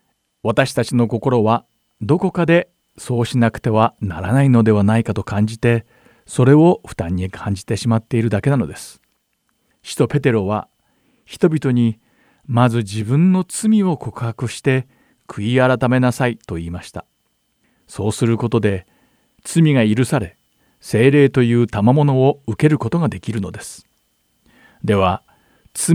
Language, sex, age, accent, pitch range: Japanese, male, 50-69, native, 110-145 Hz